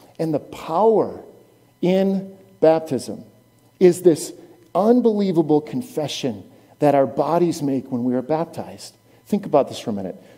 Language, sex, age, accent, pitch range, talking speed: English, male, 50-69, American, 120-170 Hz, 135 wpm